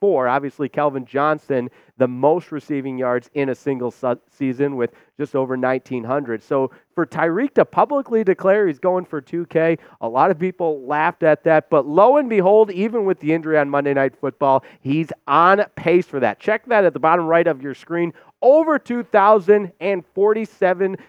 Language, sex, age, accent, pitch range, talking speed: English, male, 30-49, American, 140-205 Hz, 175 wpm